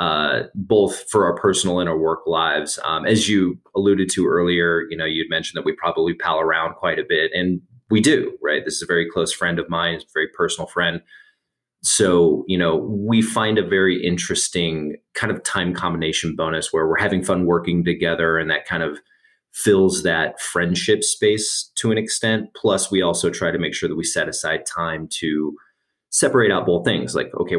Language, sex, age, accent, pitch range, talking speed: English, male, 30-49, American, 85-105 Hz, 200 wpm